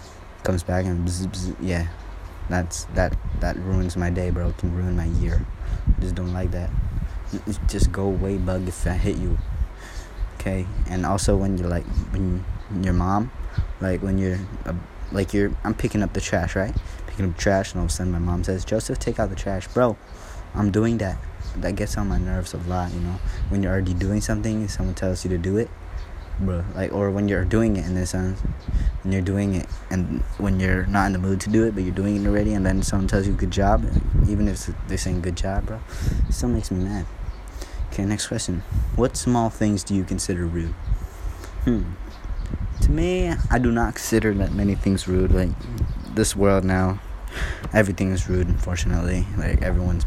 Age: 20-39